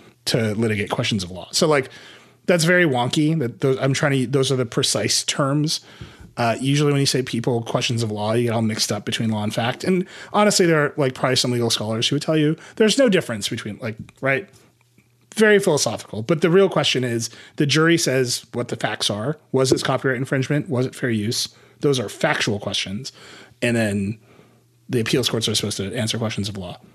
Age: 30-49